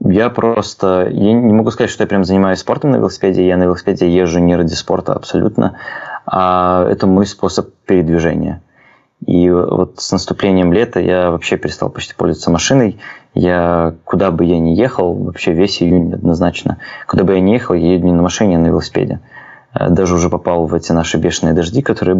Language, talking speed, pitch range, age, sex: Russian, 185 wpm, 85-100 Hz, 20-39, male